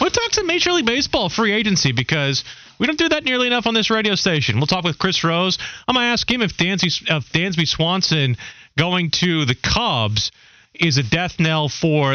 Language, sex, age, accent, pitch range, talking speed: English, male, 30-49, American, 125-160 Hz, 210 wpm